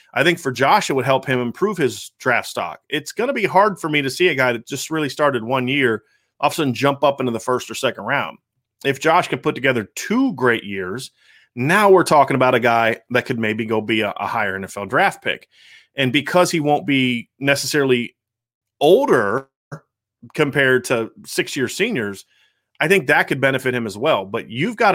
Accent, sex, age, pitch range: American, male, 30-49, 115-150 Hz